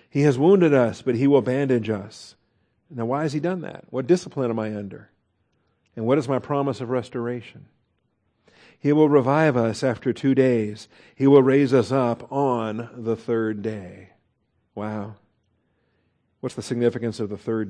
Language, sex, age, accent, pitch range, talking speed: English, male, 50-69, American, 120-150 Hz, 170 wpm